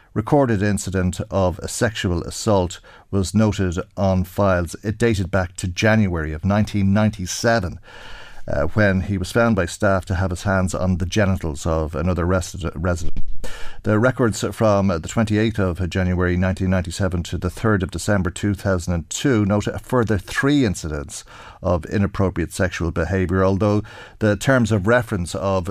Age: 50-69